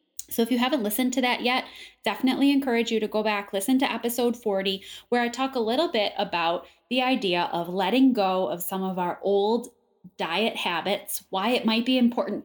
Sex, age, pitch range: female, 10-29, 180-235 Hz